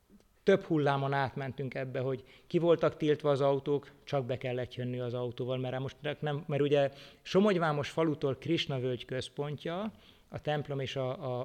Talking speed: 165 wpm